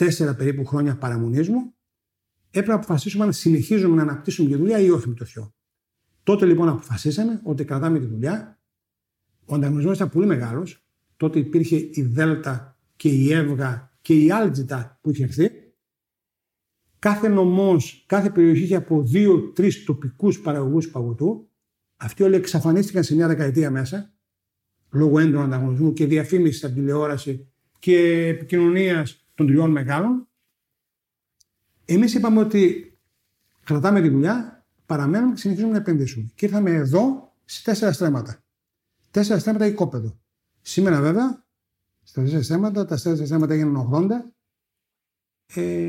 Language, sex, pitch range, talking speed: Greek, male, 130-185 Hz, 130 wpm